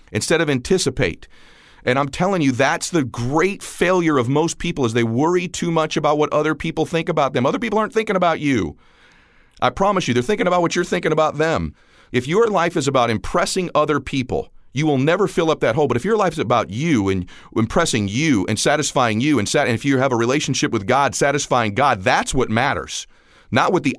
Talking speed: 220 wpm